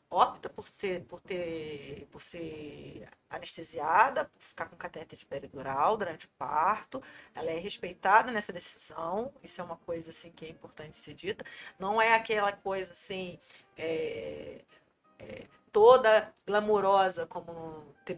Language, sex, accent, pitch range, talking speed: Portuguese, female, Brazilian, 170-245 Hz, 145 wpm